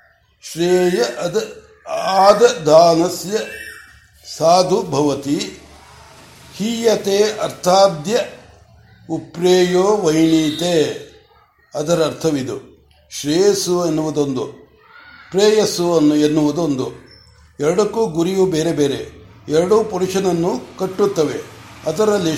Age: 60-79